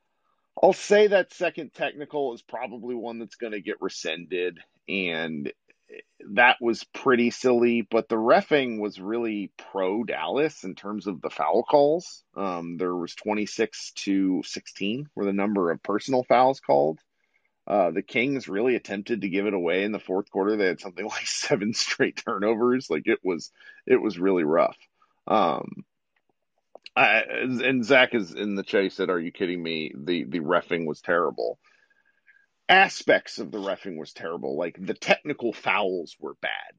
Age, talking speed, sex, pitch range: 40-59, 165 wpm, male, 100-165 Hz